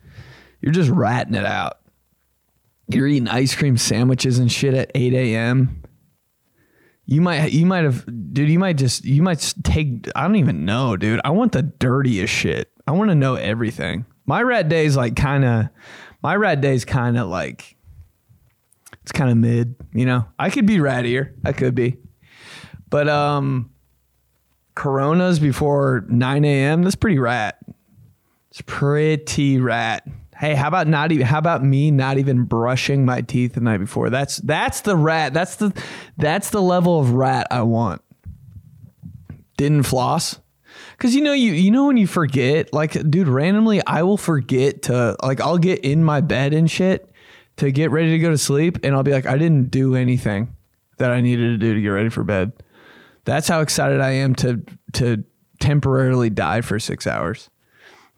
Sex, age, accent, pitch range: male, 20-39, American, 120-155 Hz